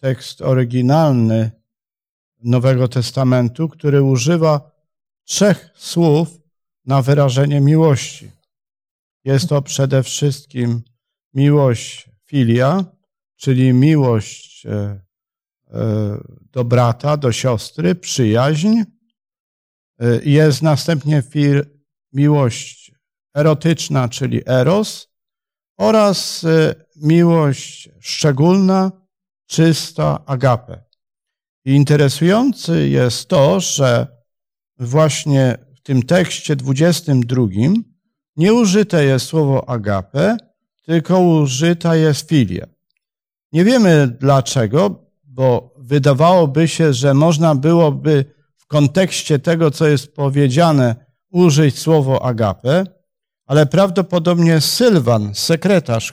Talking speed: 80 wpm